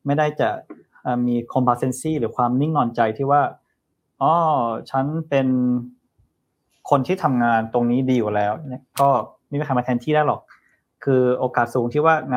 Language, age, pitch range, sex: Thai, 20-39, 125-150 Hz, male